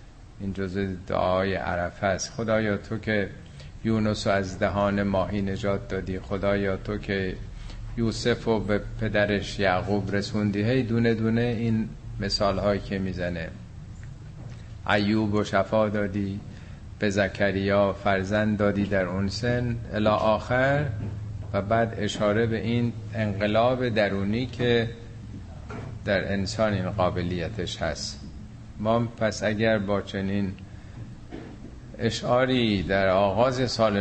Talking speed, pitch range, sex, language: 115 wpm, 95-115 Hz, male, Persian